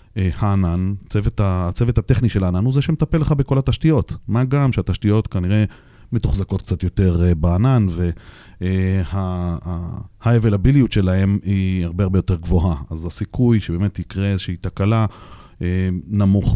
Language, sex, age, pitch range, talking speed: Hebrew, male, 30-49, 95-115 Hz, 125 wpm